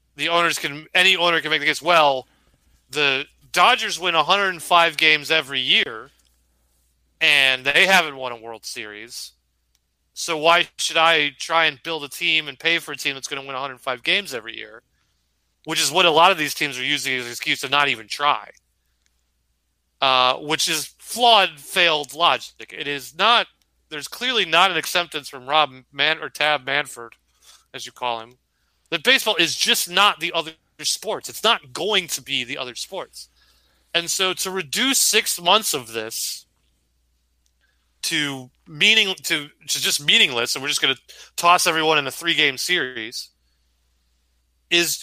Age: 30-49